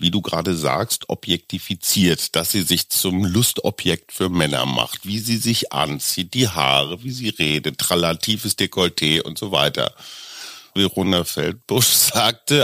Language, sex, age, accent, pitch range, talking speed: German, male, 50-69, German, 85-120 Hz, 140 wpm